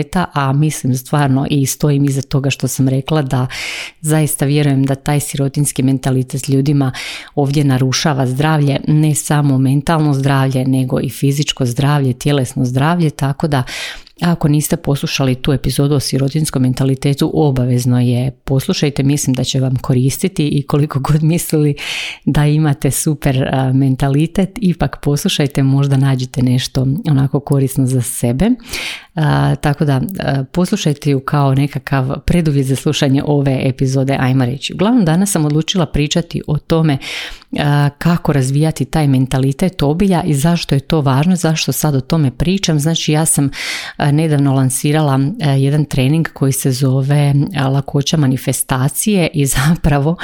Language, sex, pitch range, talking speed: Croatian, female, 135-155 Hz, 145 wpm